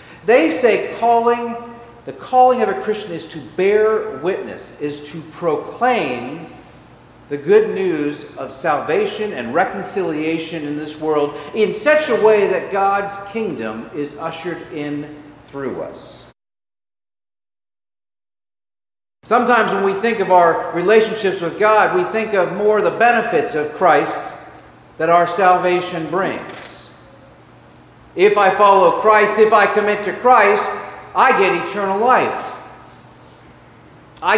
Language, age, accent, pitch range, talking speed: English, 50-69, American, 165-235 Hz, 125 wpm